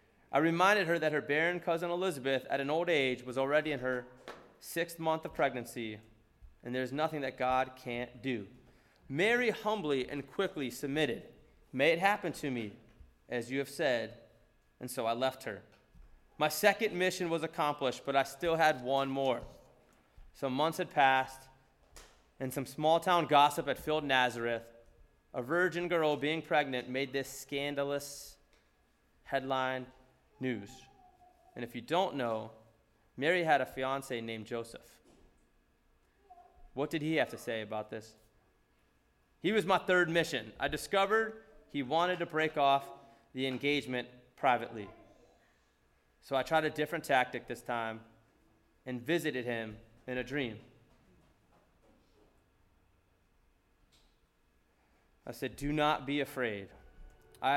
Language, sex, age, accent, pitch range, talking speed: English, male, 20-39, American, 115-155 Hz, 140 wpm